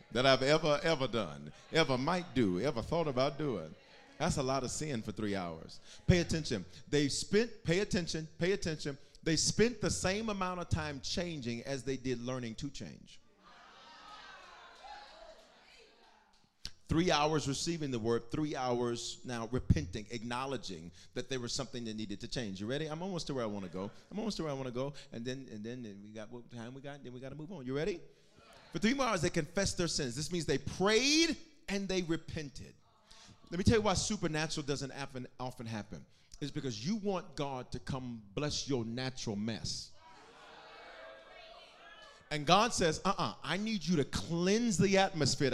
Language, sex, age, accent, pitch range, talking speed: English, male, 40-59, American, 125-185 Hz, 190 wpm